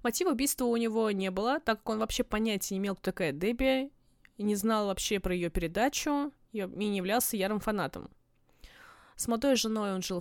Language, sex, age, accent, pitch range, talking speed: Russian, female, 20-39, native, 200-255 Hz, 195 wpm